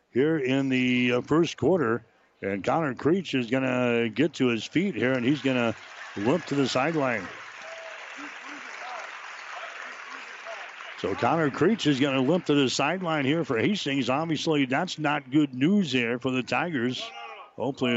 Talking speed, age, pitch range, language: 155 wpm, 60-79, 125-150 Hz, English